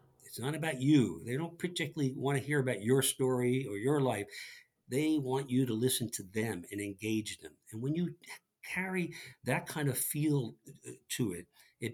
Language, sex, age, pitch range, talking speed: English, male, 60-79, 110-140 Hz, 185 wpm